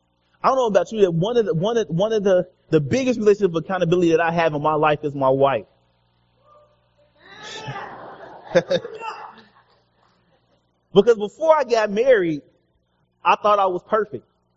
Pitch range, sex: 155-210 Hz, male